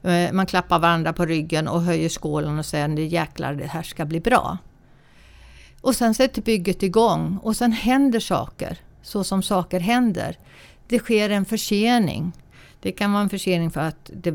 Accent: native